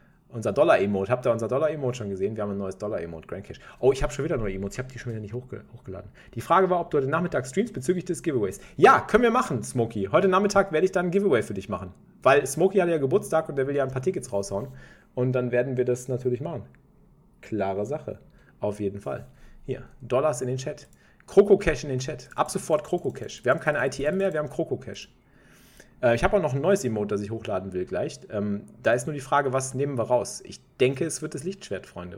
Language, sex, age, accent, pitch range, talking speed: German, male, 40-59, German, 115-165 Hz, 245 wpm